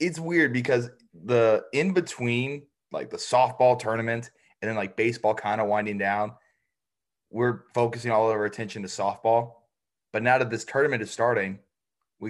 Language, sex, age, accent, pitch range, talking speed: English, male, 20-39, American, 105-125 Hz, 160 wpm